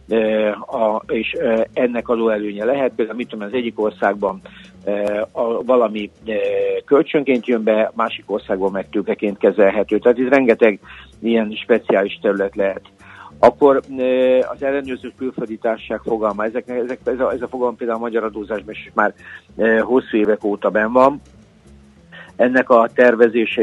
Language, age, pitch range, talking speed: Hungarian, 60-79, 110-125 Hz, 135 wpm